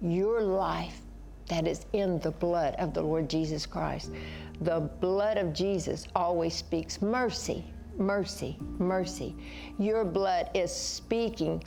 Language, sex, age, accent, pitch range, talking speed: English, female, 60-79, American, 180-215 Hz, 130 wpm